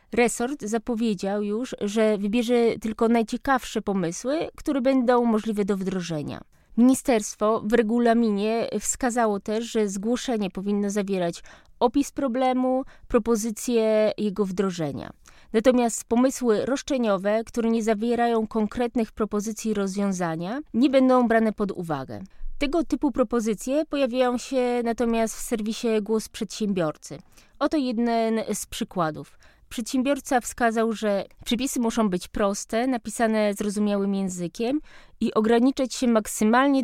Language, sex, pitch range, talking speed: Polish, female, 210-250 Hz, 110 wpm